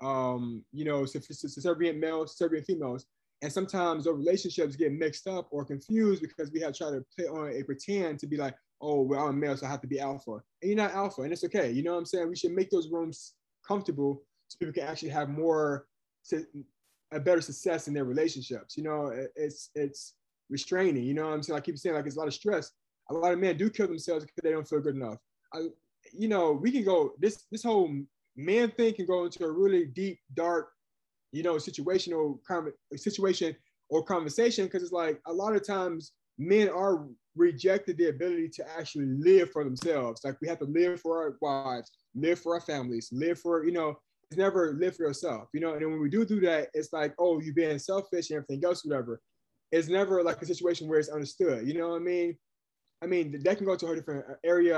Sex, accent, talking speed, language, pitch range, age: male, American, 225 wpm, English, 145-180 Hz, 20-39